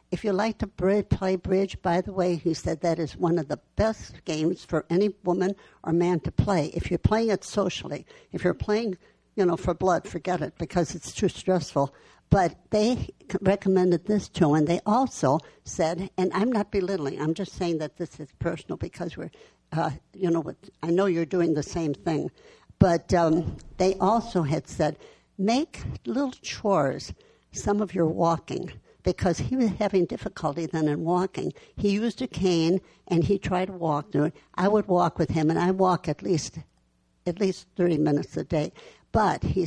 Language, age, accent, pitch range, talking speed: English, 60-79, American, 165-195 Hz, 190 wpm